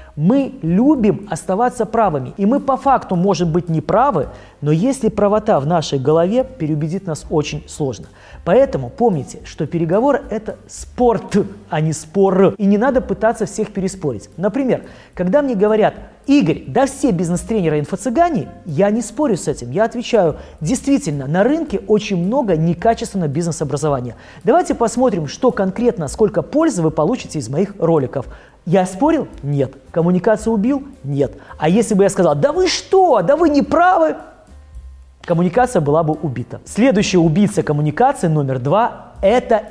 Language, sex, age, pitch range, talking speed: Russian, male, 20-39, 155-235 Hz, 150 wpm